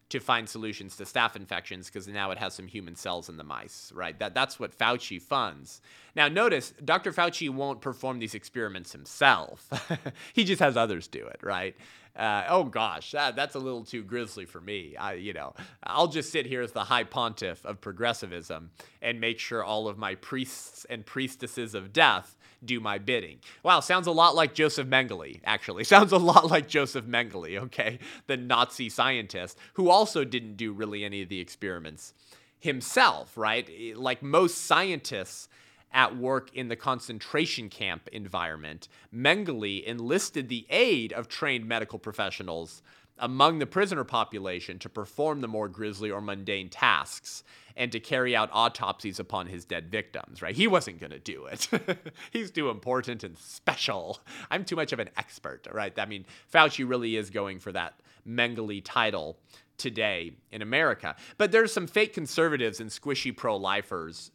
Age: 30-49